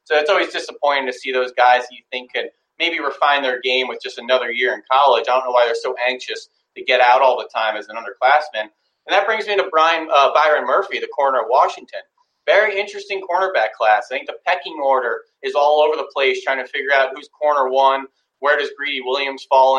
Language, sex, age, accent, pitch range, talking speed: English, male, 30-49, American, 140-175 Hz, 235 wpm